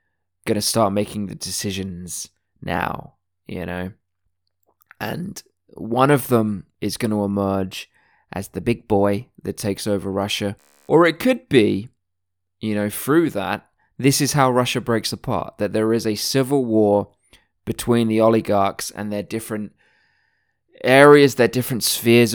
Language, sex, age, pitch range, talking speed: English, male, 20-39, 95-120 Hz, 150 wpm